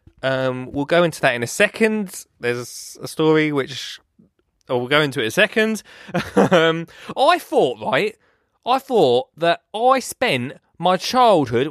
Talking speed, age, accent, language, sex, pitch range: 160 wpm, 20-39, British, English, male, 145-235 Hz